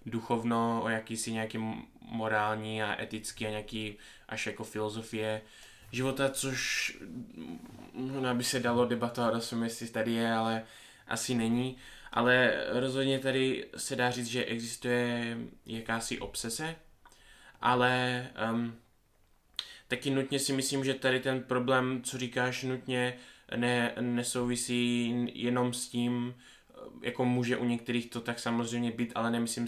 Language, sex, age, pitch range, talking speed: Czech, male, 20-39, 115-125 Hz, 135 wpm